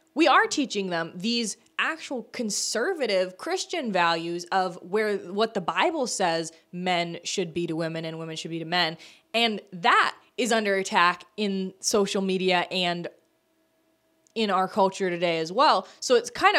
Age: 20-39